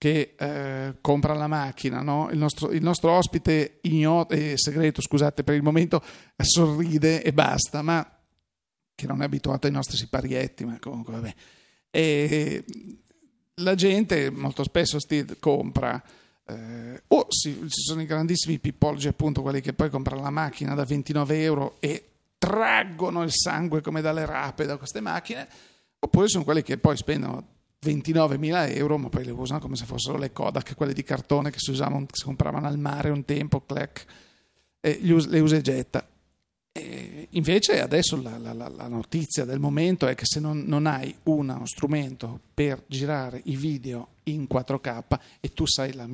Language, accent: Italian, native